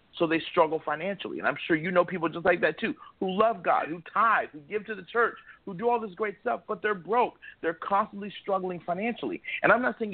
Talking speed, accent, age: 245 wpm, American, 40-59